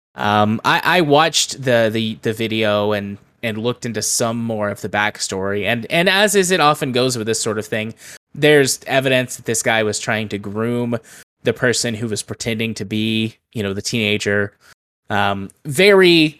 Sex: male